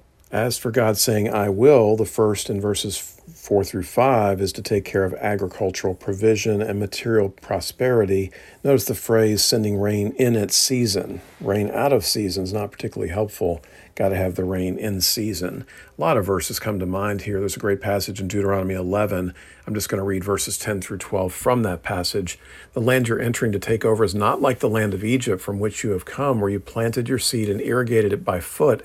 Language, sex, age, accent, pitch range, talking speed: English, male, 50-69, American, 95-115 Hz, 210 wpm